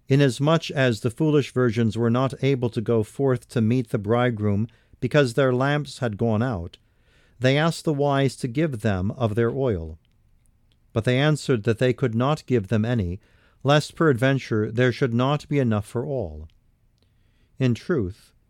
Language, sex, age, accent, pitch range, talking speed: English, male, 50-69, American, 115-135 Hz, 170 wpm